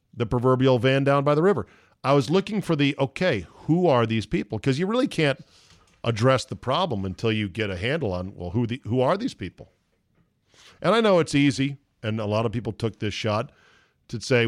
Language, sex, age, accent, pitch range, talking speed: English, male, 40-59, American, 105-140 Hz, 215 wpm